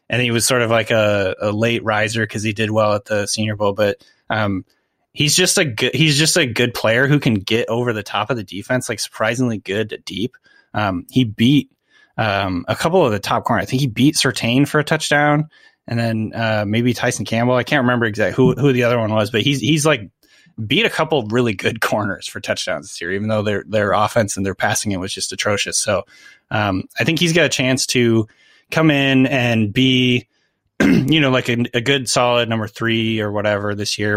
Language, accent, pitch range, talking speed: English, American, 105-130 Hz, 230 wpm